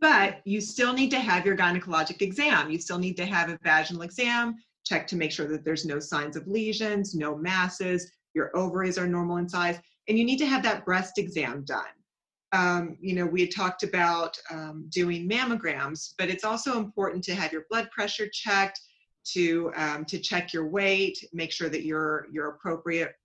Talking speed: 195 wpm